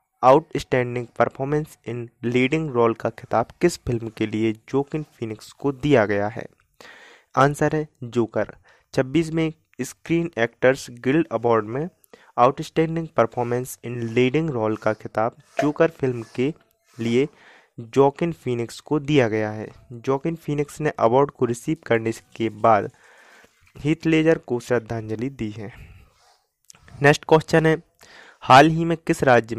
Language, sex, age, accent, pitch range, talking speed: Hindi, male, 20-39, native, 115-150 Hz, 140 wpm